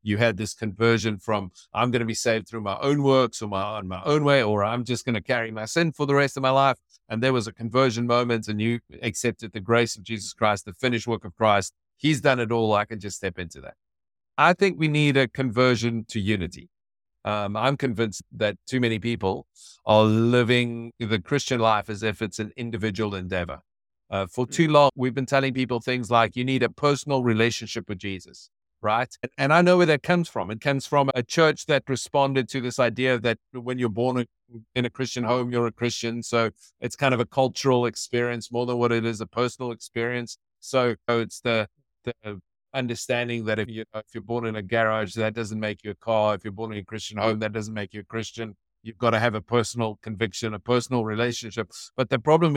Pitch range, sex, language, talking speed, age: 110-130 Hz, male, English, 225 wpm, 50-69